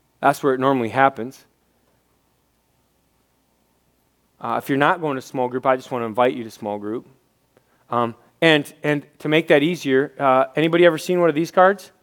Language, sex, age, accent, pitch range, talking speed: English, male, 30-49, American, 140-200 Hz, 185 wpm